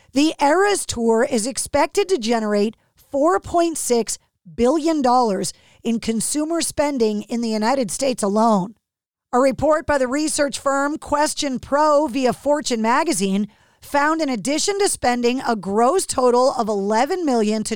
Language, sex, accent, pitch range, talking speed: English, female, American, 230-285 Hz, 135 wpm